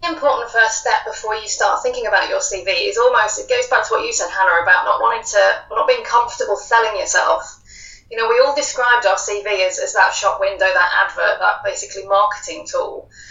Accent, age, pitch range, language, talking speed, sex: British, 30-49, 200-295 Hz, English, 210 wpm, female